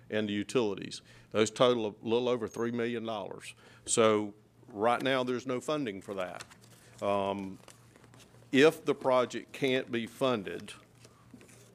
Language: English